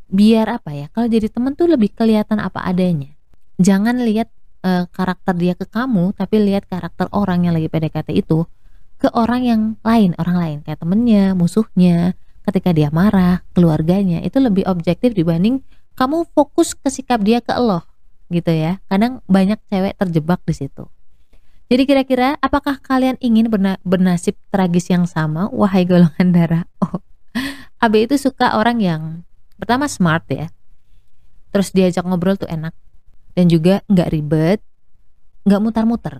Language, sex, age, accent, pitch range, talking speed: Indonesian, female, 20-39, native, 170-230 Hz, 150 wpm